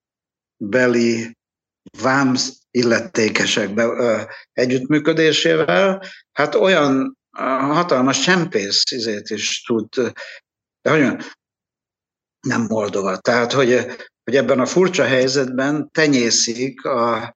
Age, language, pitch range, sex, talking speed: 60-79, Hungarian, 110-135 Hz, male, 70 wpm